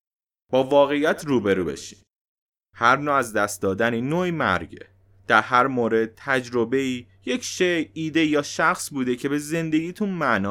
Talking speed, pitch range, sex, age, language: 145 wpm, 110-160 Hz, male, 30-49, Persian